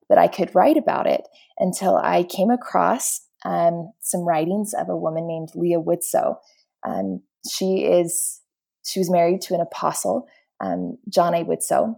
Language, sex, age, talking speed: English, female, 20-39, 160 wpm